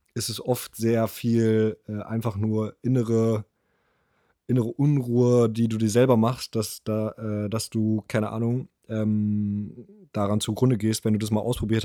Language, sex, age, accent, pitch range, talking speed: German, male, 20-39, German, 110-125 Hz, 150 wpm